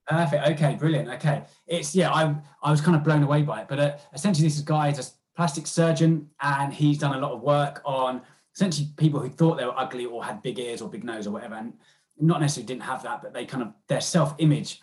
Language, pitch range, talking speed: English, 130-155 Hz, 245 wpm